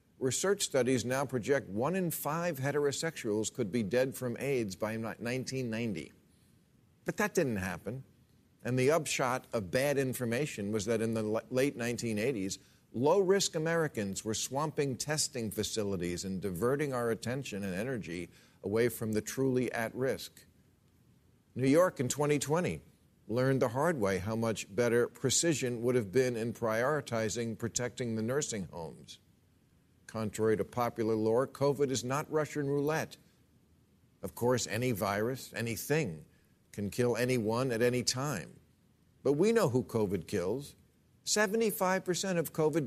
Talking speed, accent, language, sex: 140 wpm, American, English, male